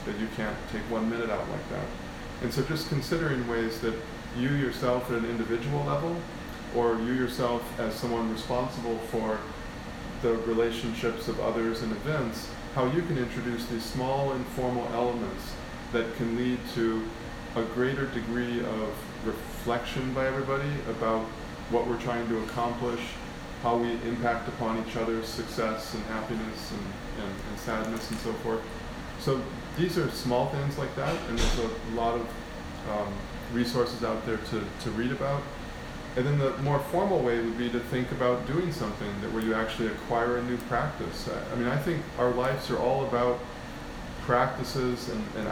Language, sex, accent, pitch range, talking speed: English, male, American, 115-125 Hz, 165 wpm